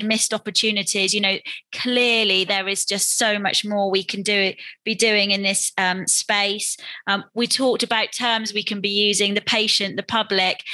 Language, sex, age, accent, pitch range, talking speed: English, female, 20-39, British, 195-225 Hz, 190 wpm